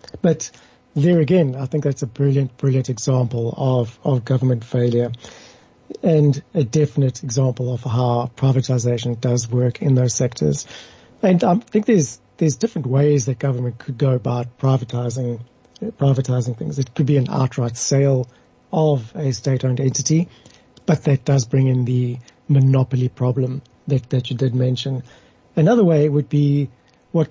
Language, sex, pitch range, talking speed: English, male, 125-145 Hz, 150 wpm